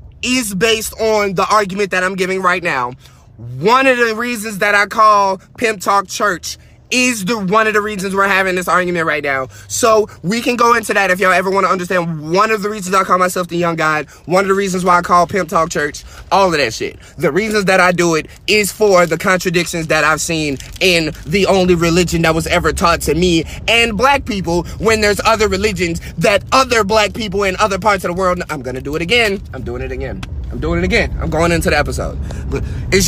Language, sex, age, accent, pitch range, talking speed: English, male, 20-39, American, 160-205 Hz, 230 wpm